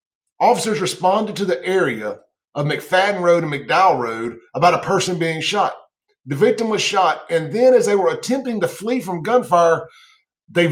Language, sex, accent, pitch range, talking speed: English, male, American, 150-205 Hz, 175 wpm